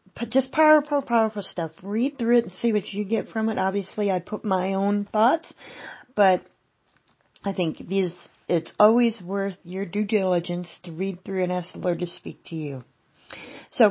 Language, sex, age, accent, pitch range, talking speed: English, female, 40-59, American, 180-220 Hz, 175 wpm